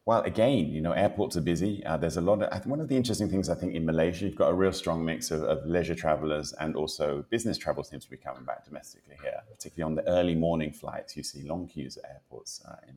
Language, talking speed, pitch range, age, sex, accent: English, 260 wpm, 75-90 Hz, 30-49, male, British